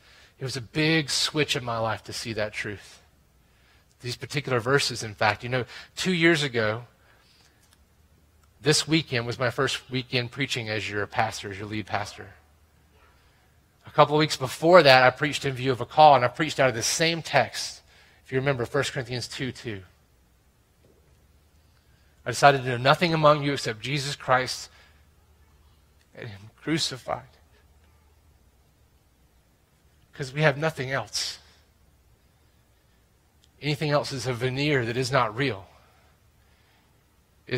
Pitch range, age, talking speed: 90-150 Hz, 30-49, 145 wpm